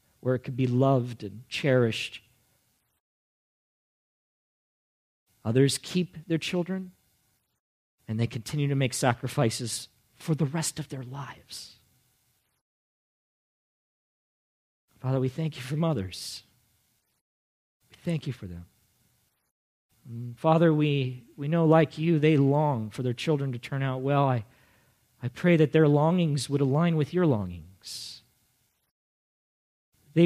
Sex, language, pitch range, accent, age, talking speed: male, English, 120-165 Hz, American, 40-59, 125 wpm